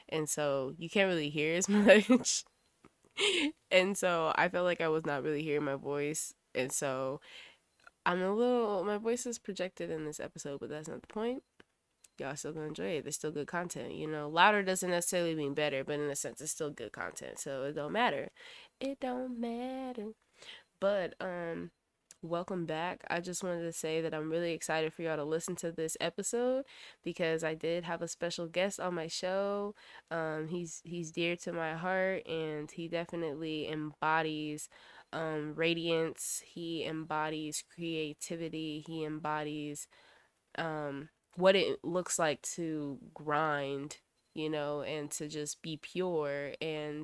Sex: female